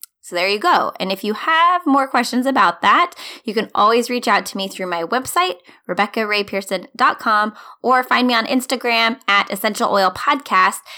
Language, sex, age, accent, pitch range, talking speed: English, female, 20-39, American, 195-265 Hz, 175 wpm